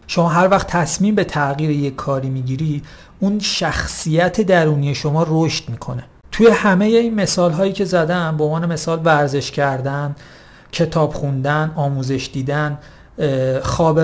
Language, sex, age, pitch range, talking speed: Persian, male, 40-59, 145-185 Hz, 135 wpm